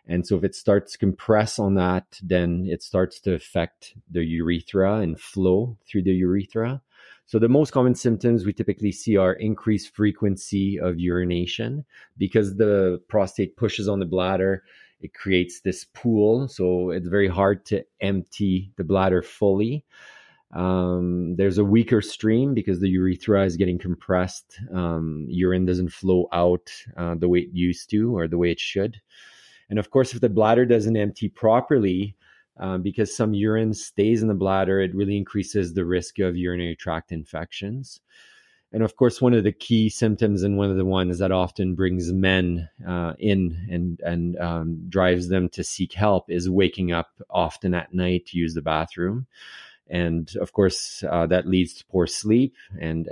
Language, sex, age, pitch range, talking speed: English, male, 30-49, 90-105 Hz, 175 wpm